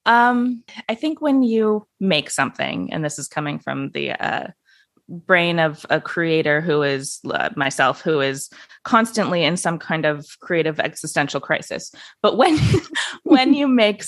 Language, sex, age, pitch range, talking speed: English, female, 20-39, 160-205 Hz, 160 wpm